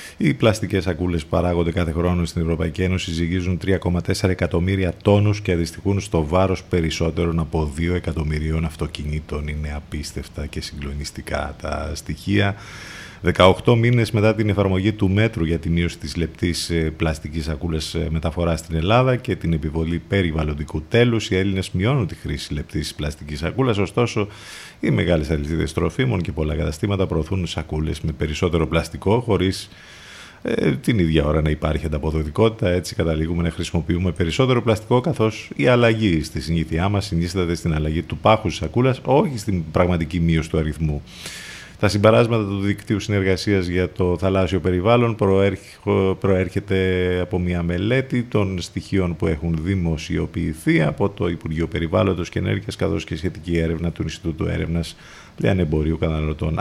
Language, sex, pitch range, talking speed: Greek, male, 80-100 Hz, 145 wpm